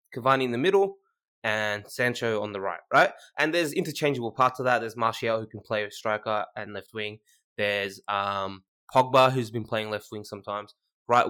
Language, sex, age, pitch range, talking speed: English, male, 20-39, 110-145 Hz, 190 wpm